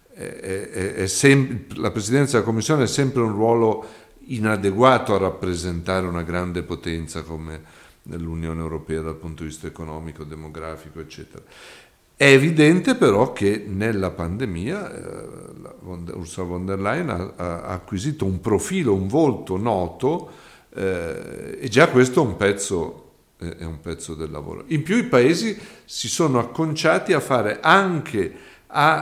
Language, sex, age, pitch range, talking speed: Italian, male, 50-69, 85-125 Hz, 155 wpm